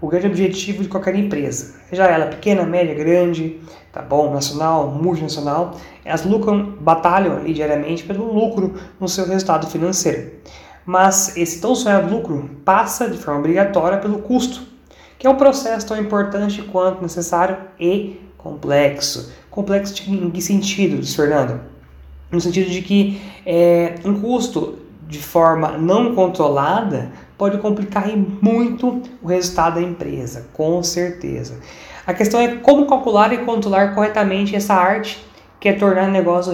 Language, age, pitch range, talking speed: Portuguese, 20-39, 155-200 Hz, 145 wpm